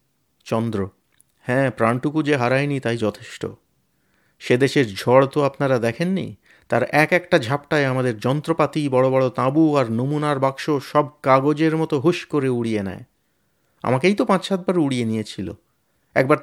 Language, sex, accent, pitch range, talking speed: Bengali, male, native, 115-150 Hz, 140 wpm